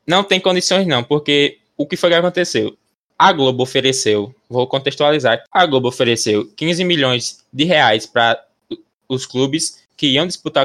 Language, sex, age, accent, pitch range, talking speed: Portuguese, male, 10-29, Brazilian, 125-175 Hz, 160 wpm